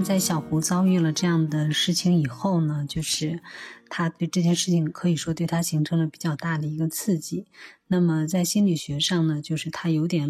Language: Chinese